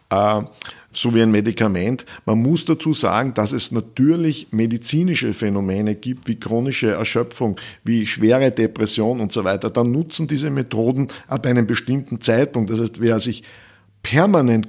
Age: 50-69